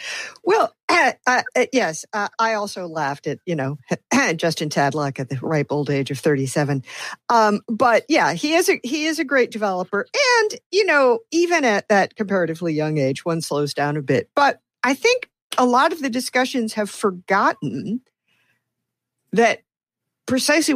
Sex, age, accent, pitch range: female, 50-69, American, 175-265 Hz